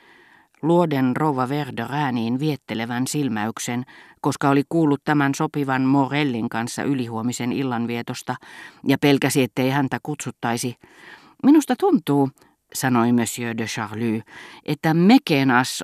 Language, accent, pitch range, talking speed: Finnish, native, 120-150 Hz, 100 wpm